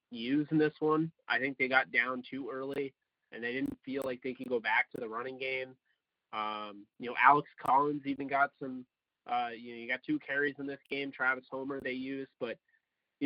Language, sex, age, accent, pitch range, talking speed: English, male, 20-39, American, 120-145 Hz, 215 wpm